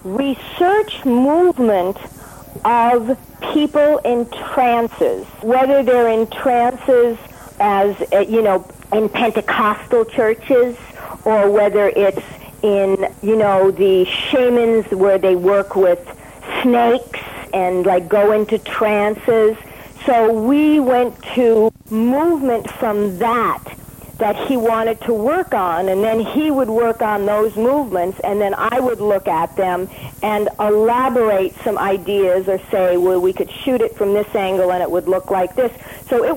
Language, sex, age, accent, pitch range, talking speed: English, female, 50-69, American, 200-255 Hz, 140 wpm